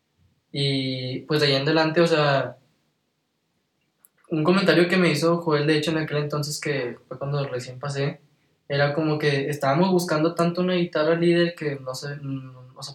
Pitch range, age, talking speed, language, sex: 130-155 Hz, 10-29, 175 wpm, Spanish, male